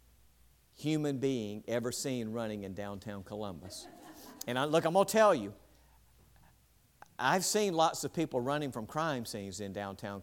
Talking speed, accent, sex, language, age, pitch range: 160 wpm, American, male, English, 50-69, 105-155 Hz